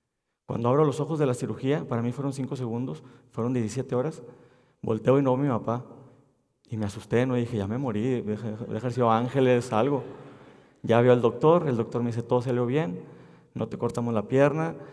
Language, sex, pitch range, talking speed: Spanish, male, 115-140 Hz, 200 wpm